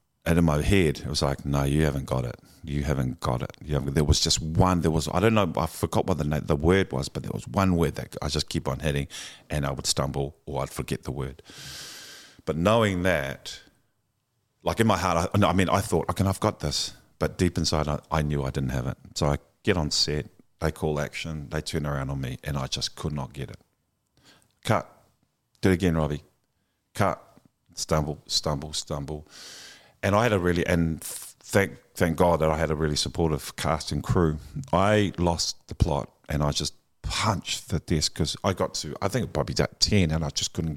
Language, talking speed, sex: English, 225 wpm, male